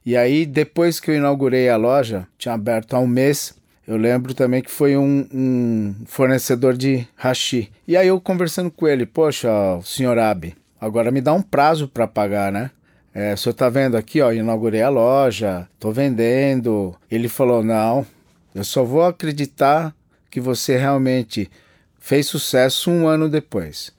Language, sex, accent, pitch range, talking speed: Portuguese, male, Brazilian, 110-140 Hz, 170 wpm